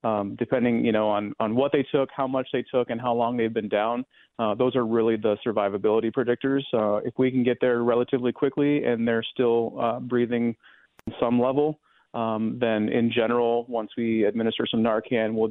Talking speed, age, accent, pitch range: 195 wpm, 30-49, American, 110-125 Hz